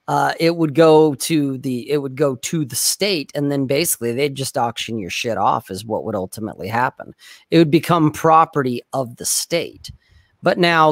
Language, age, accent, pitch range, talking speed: English, 40-59, American, 125-165 Hz, 190 wpm